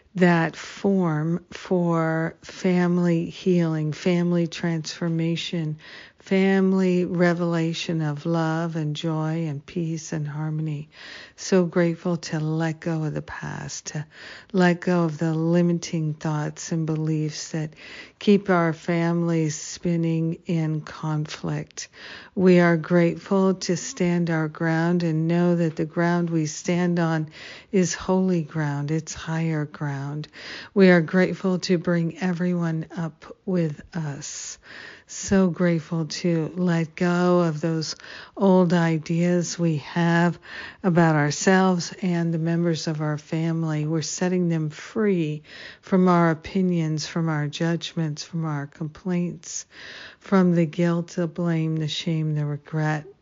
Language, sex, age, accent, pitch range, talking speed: English, female, 50-69, American, 155-175 Hz, 125 wpm